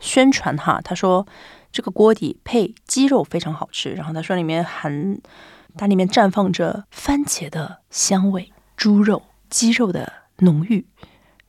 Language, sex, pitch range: Chinese, female, 170-230 Hz